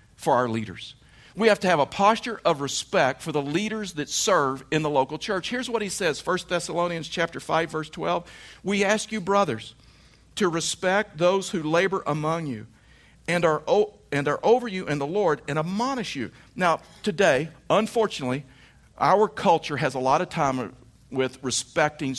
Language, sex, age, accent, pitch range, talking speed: English, male, 50-69, American, 130-165 Hz, 180 wpm